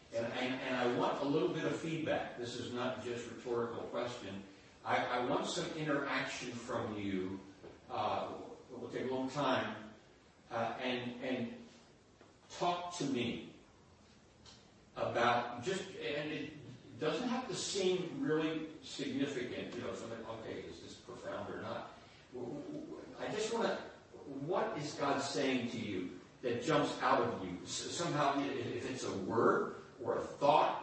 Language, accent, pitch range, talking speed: English, American, 115-140 Hz, 150 wpm